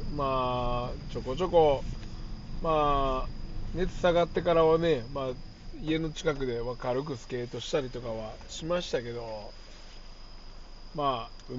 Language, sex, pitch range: Japanese, male, 110-160 Hz